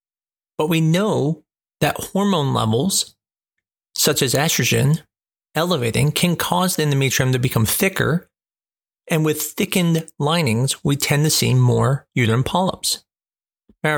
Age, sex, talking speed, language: 40-59, male, 125 wpm, English